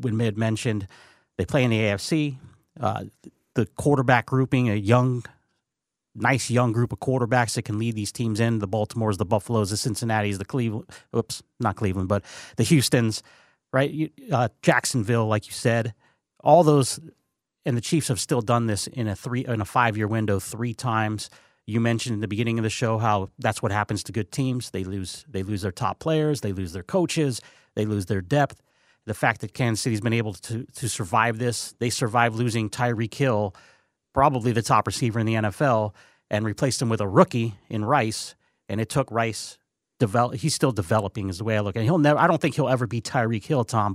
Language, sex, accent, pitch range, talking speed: English, male, American, 110-125 Hz, 200 wpm